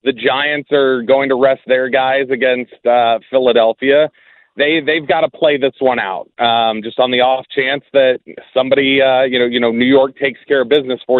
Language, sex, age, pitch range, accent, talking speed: English, male, 30-49, 130-155 Hz, American, 210 wpm